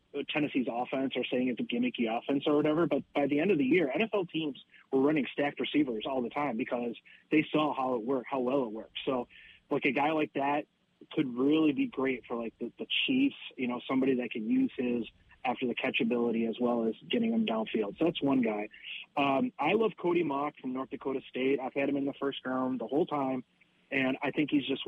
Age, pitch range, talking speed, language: 30-49, 130-155 Hz, 230 wpm, English